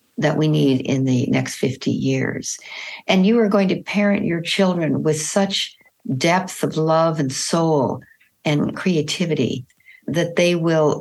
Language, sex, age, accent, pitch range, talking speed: English, female, 60-79, American, 150-195 Hz, 155 wpm